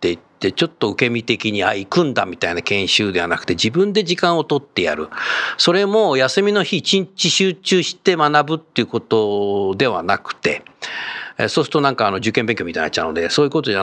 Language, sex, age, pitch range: Japanese, male, 50-69, 140-230 Hz